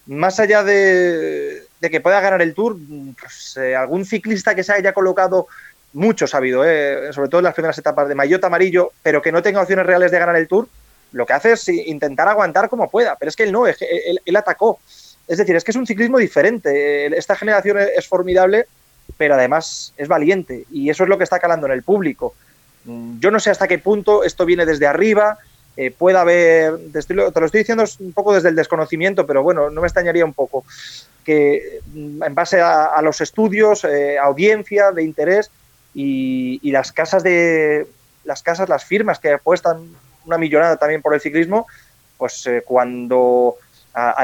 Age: 30-49